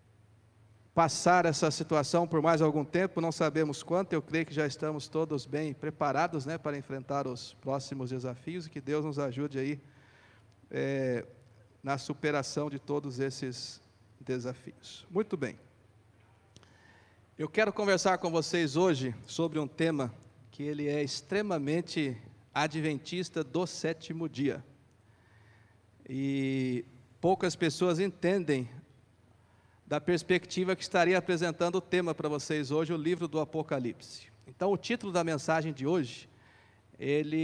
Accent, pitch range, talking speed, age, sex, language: Brazilian, 125-170 Hz, 130 wpm, 50-69, male, Portuguese